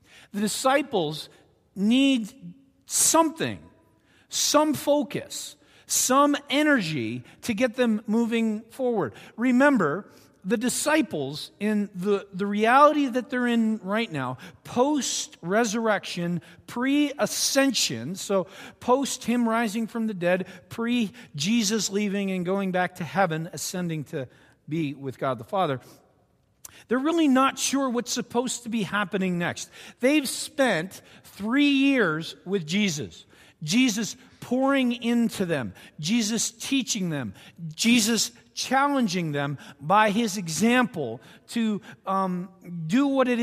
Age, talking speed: 50-69, 115 wpm